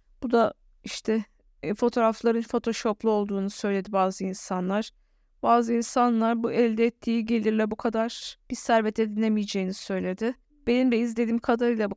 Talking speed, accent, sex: 135 wpm, native, female